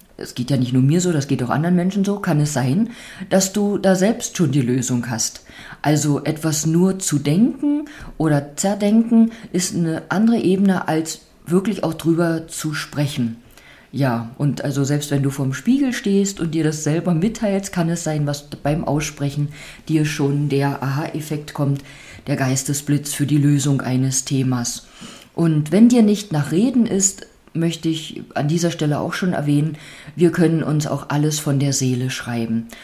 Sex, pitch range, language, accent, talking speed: female, 140-170 Hz, German, German, 175 wpm